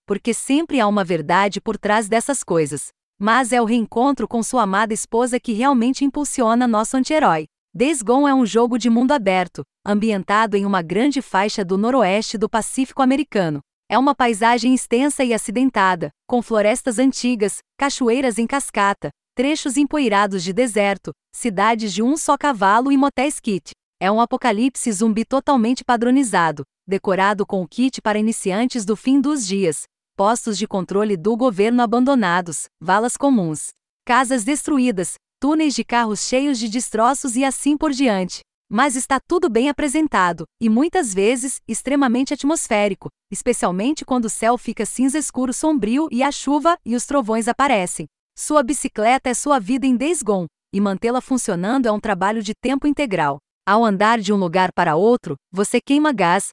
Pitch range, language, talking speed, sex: 205-265 Hz, Portuguese, 160 wpm, female